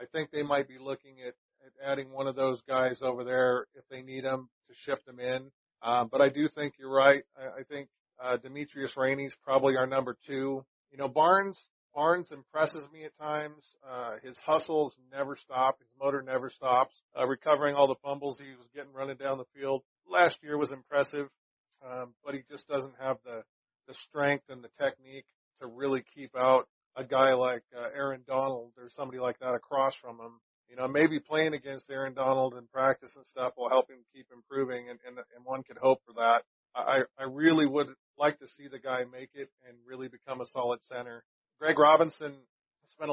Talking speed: 205 wpm